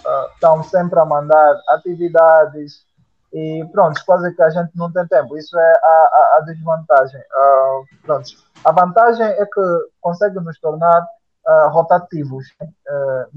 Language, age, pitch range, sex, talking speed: Portuguese, 20-39, 155-195 Hz, male, 150 wpm